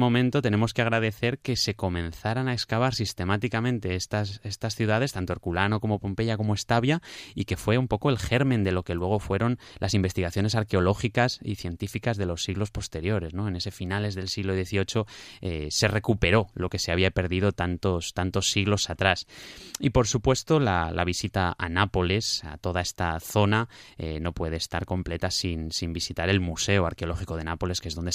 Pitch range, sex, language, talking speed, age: 90-110 Hz, male, Spanish, 185 wpm, 20-39